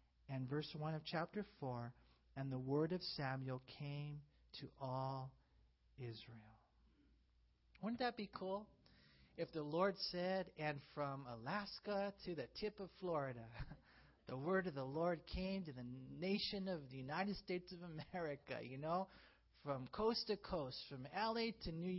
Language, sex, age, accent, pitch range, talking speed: English, male, 40-59, American, 135-190 Hz, 155 wpm